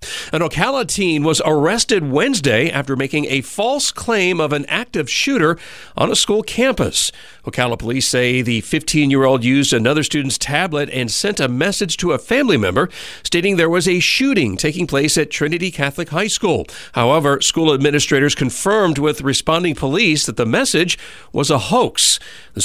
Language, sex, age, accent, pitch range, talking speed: English, male, 50-69, American, 130-175 Hz, 165 wpm